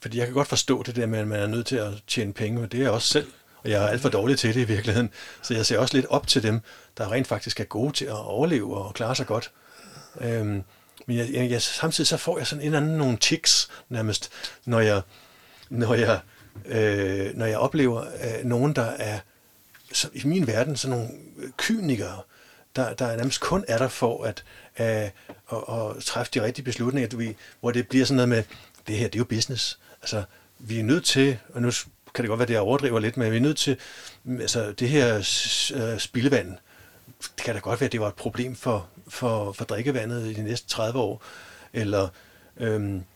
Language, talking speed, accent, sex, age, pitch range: Danish, 220 wpm, native, male, 60-79, 110-130 Hz